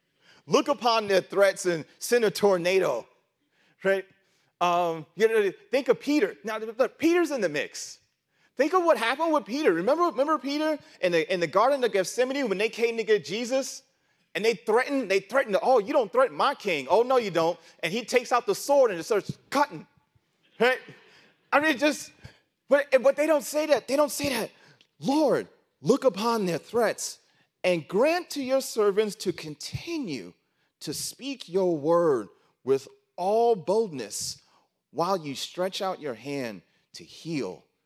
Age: 30-49